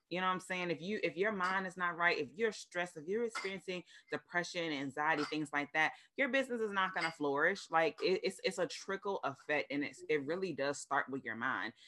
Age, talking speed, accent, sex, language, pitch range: 20-39, 235 wpm, American, female, English, 145-185 Hz